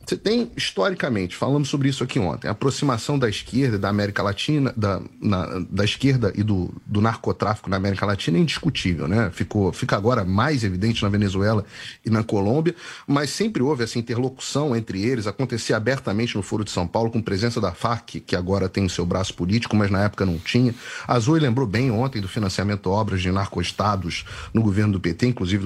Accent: Brazilian